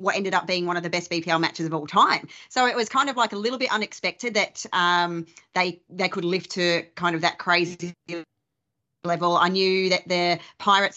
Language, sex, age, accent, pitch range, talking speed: English, female, 30-49, Australian, 170-195 Hz, 220 wpm